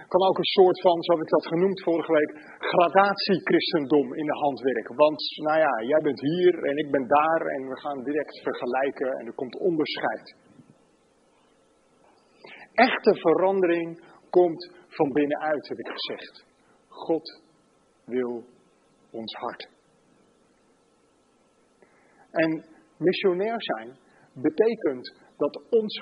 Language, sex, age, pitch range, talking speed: Dutch, male, 50-69, 155-230 Hz, 120 wpm